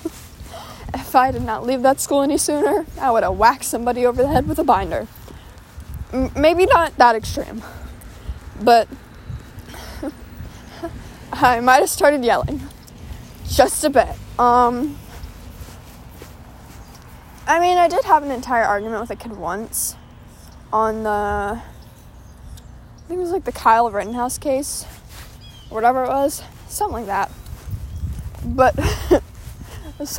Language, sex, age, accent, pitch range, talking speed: English, female, 20-39, American, 220-300 Hz, 130 wpm